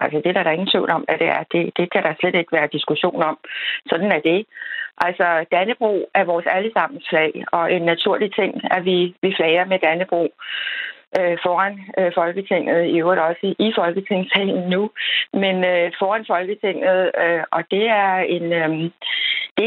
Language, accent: Danish, native